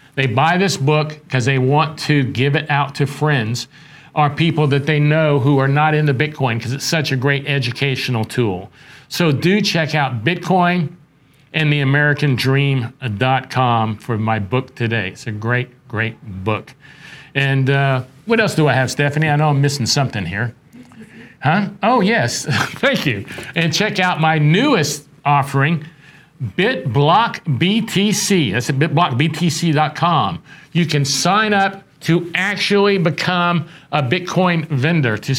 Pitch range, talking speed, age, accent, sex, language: 135-165 Hz, 145 wpm, 50-69, American, male, English